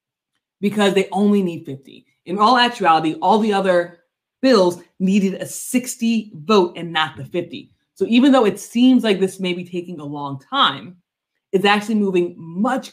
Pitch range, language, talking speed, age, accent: 165-220 Hz, English, 170 wpm, 20-39, American